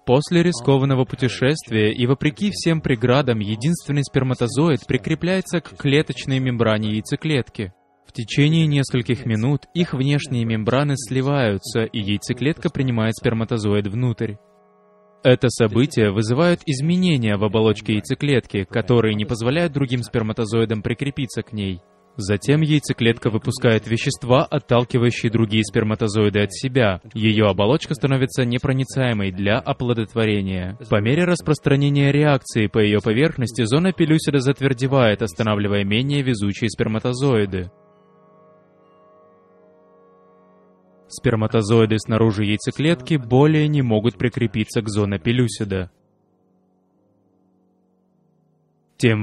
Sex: male